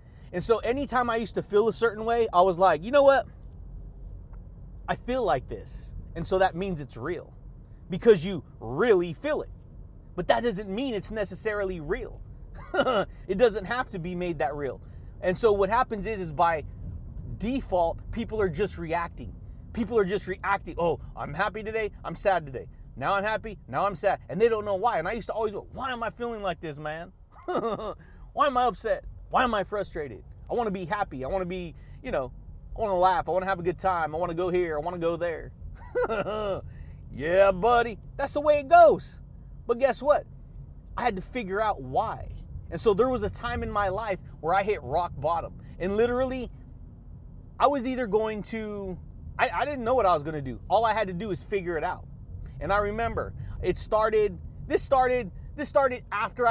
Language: English